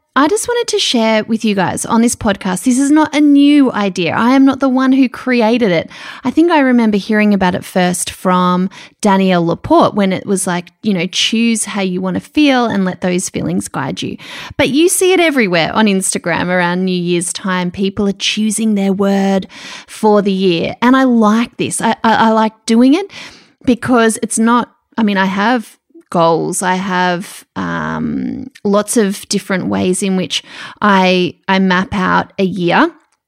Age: 20-39